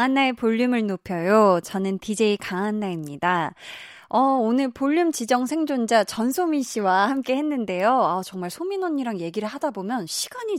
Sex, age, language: female, 20-39, Korean